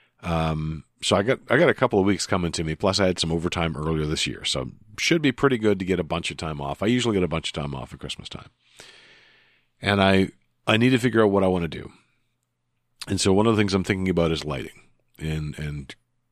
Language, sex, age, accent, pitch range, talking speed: English, male, 40-59, American, 80-105 Hz, 255 wpm